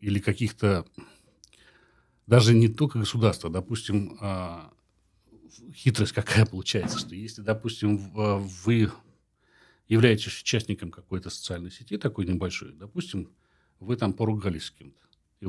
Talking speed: 110 wpm